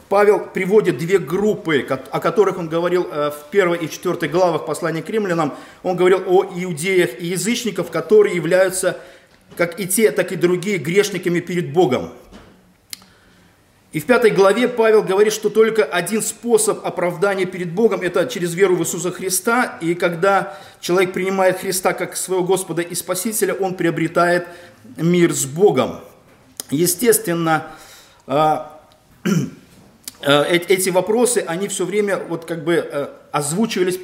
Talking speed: 135 wpm